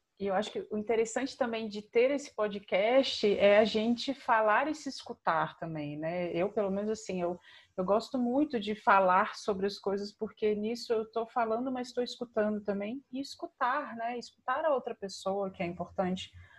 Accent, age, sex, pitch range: Brazilian, 30-49, female, 200-265 Hz